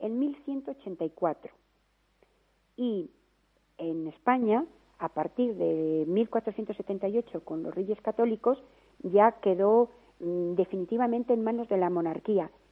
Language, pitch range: Spanish, 190-255 Hz